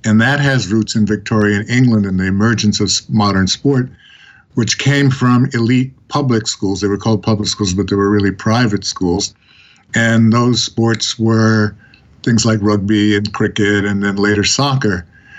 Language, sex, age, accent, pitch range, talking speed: English, male, 50-69, American, 105-125 Hz, 170 wpm